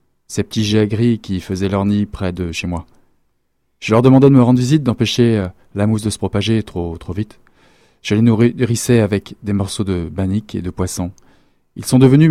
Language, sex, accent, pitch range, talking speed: French, male, French, 90-110 Hz, 210 wpm